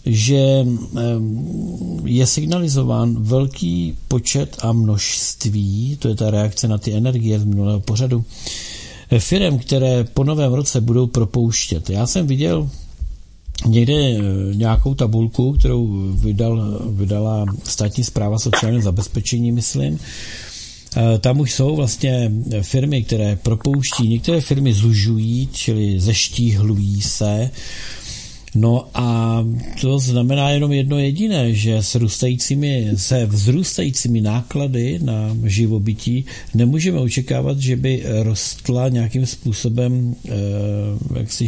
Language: Czech